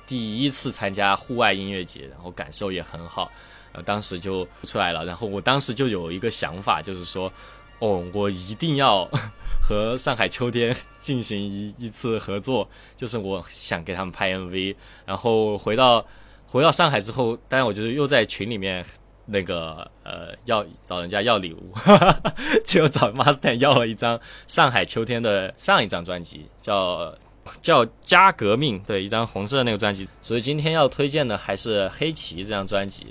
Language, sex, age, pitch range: Chinese, male, 20-39, 95-120 Hz